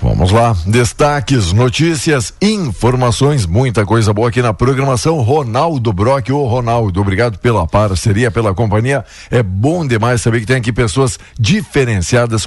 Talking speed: 145 wpm